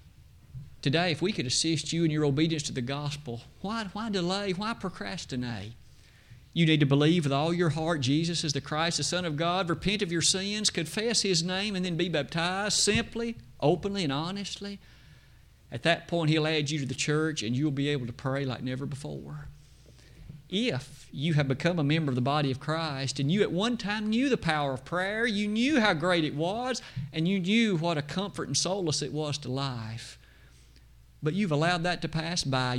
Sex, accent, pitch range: male, American, 135-180 Hz